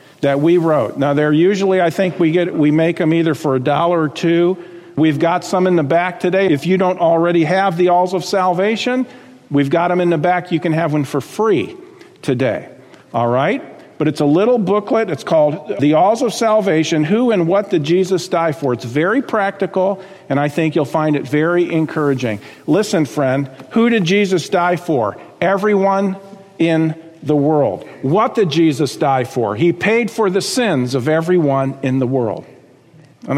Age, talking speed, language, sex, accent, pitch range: 50-69, 190 wpm, English, male, American, 150-190 Hz